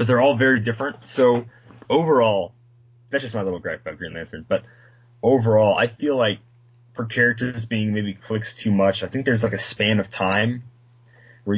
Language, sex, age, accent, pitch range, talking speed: English, male, 20-39, American, 105-120 Hz, 185 wpm